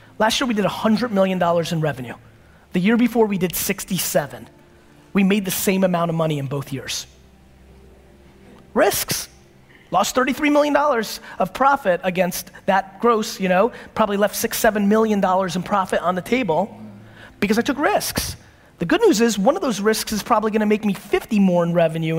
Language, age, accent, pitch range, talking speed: English, 30-49, American, 170-225 Hz, 190 wpm